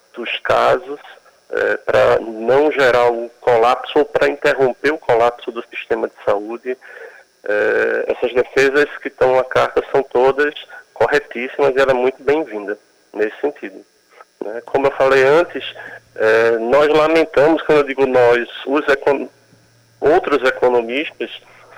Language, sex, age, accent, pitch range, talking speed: Portuguese, male, 40-59, Brazilian, 120-155 Hz, 140 wpm